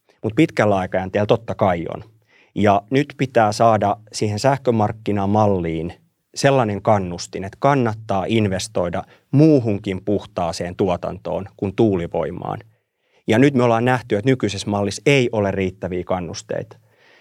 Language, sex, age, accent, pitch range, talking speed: Finnish, male, 30-49, native, 95-120 Hz, 120 wpm